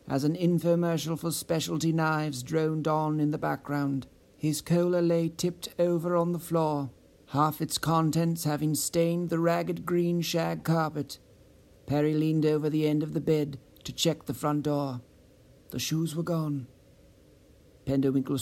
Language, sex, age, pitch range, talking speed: English, male, 60-79, 145-165 Hz, 155 wpm